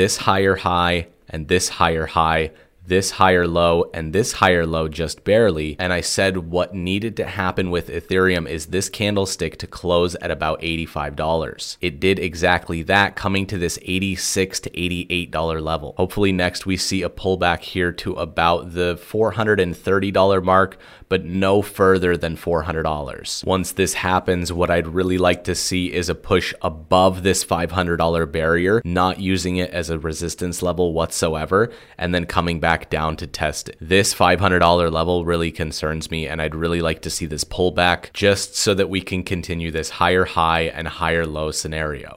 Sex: male